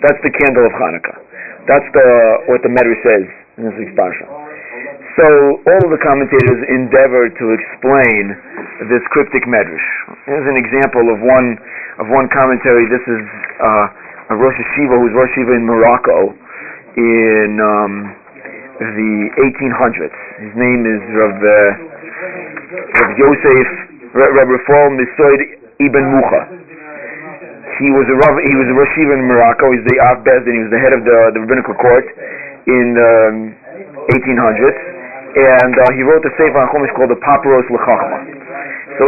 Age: 40-59